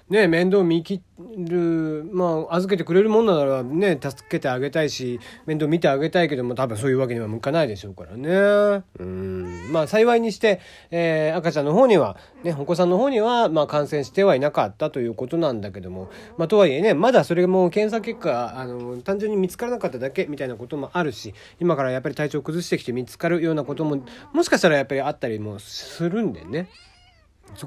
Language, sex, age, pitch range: Japanese, male, 40-59, 120-170 Hz